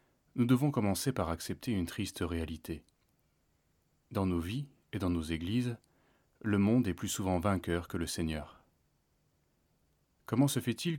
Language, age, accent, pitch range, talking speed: French, 30-49, French, 85-115 Hz, 145 wpm